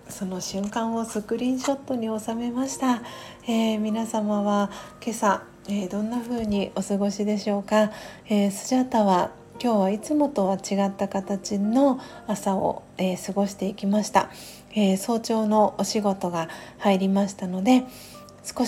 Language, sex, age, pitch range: Japanese, female, 40-59, 190-230 Hz